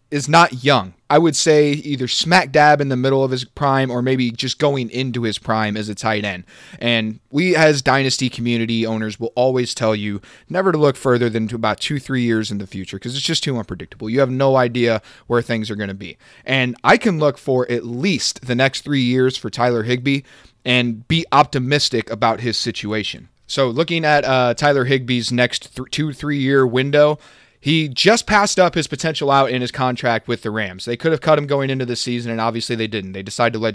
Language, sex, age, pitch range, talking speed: English, male, 30-49, 115-145 Hz, 225 wpm